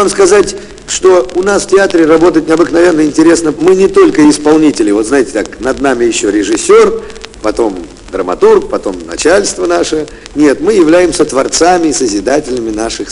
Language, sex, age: Russian, male, 50-69